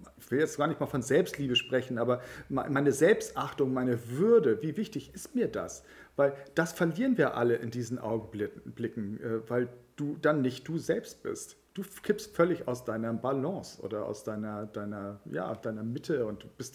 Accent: German